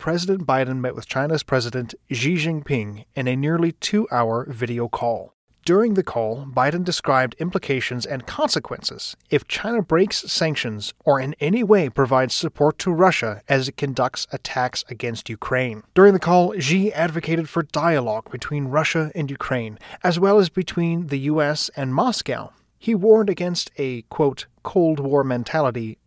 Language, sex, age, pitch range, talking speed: English, male, 30-49, 125-165 Hz, 155 wpm